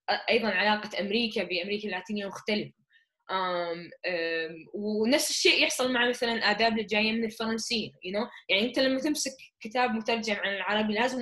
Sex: female